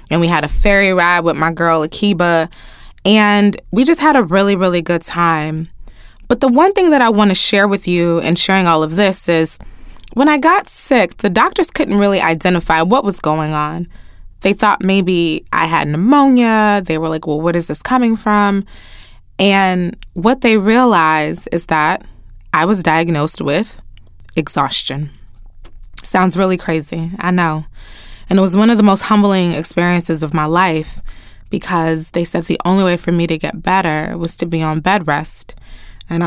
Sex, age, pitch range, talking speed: female, 20-39, 150-195 Hz, 180 wpm